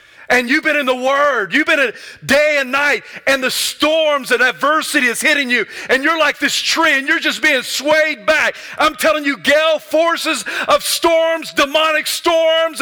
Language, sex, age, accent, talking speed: English, male, 40-59, American, 190 wpm